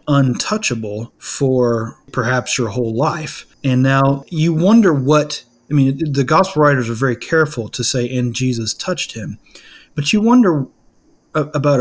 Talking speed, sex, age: 145 wpm, male, 30-49